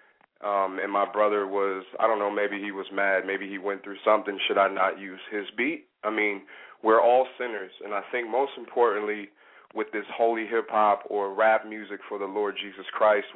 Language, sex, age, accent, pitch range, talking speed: English, male, 30-49, American, 100-110 Hz, 200 wpm